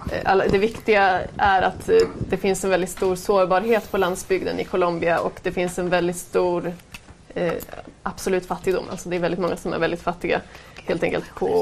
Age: 20-39